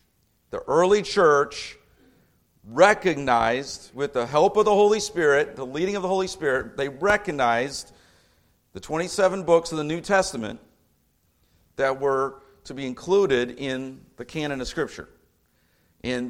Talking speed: 135 wpm